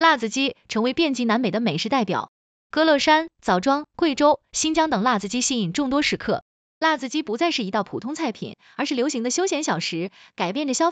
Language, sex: Chinese, female